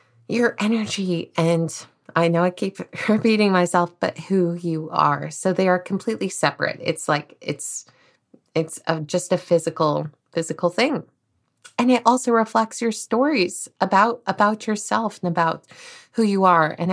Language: English